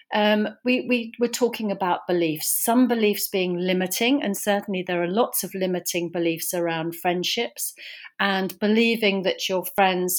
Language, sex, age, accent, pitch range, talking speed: English, female, 40-59, British, 180-225 Hz, 155 wpm